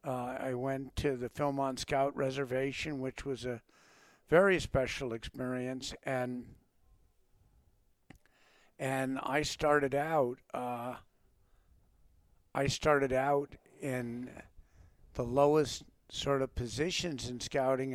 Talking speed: 105 wpm